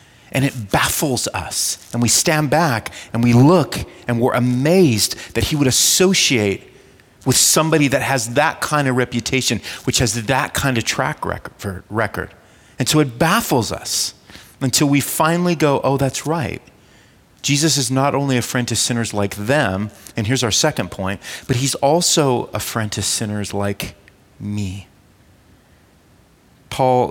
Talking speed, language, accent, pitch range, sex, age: 155 wpm, English, American, 110-145 Hz, male, 30-49